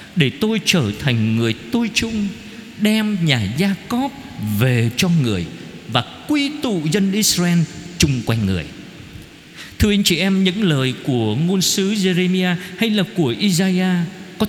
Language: Vietnamese